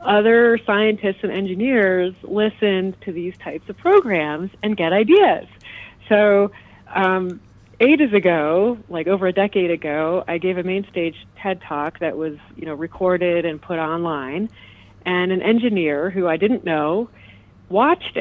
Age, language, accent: 40-59, English, American